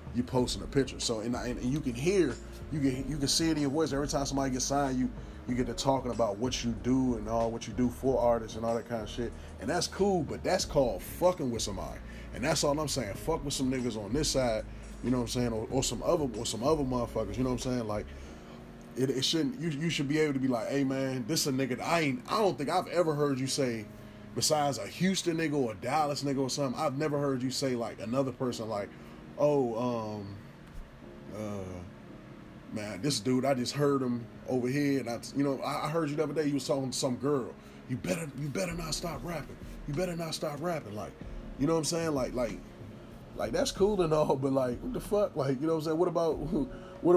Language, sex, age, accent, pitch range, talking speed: English, male, 20-39, American, 120-145 Hz, 255 wpm